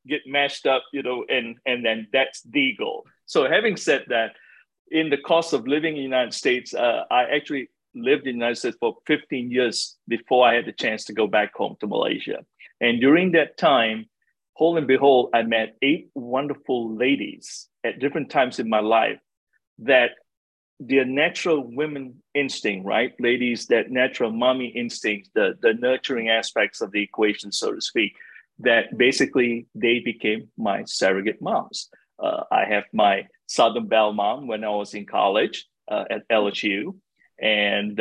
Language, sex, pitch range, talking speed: English, male, 110-135 Hz, 170 wpm